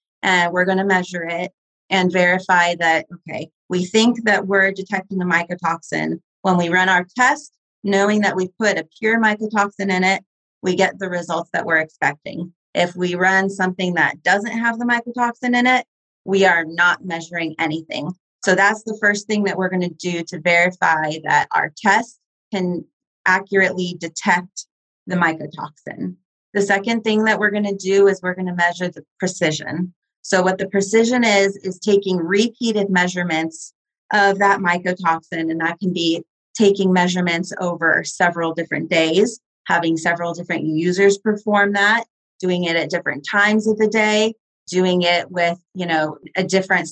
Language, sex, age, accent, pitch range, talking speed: English, female, 30-49, American, 175-205 Hz, 170 wpm